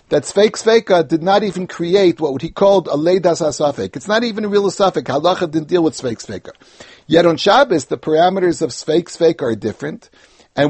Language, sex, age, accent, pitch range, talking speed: English, male, 60-79, American, 140-185 Hz, 210 wpm